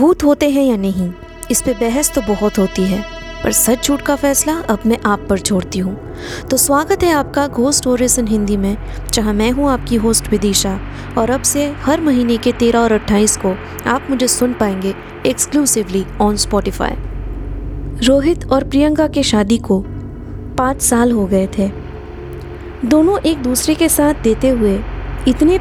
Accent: native